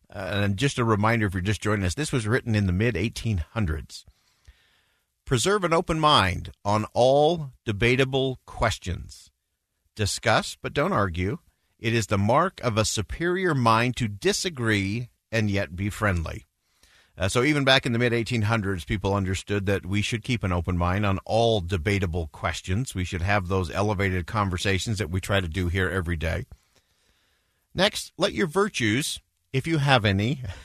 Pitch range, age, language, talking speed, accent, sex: 95-125 Hz, 50-69, English, 165 wpm, American, male